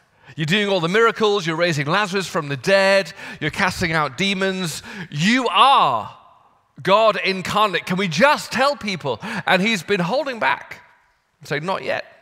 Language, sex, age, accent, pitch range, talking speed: English, male, 40-59, British, 150-195 Hz, 155 wpm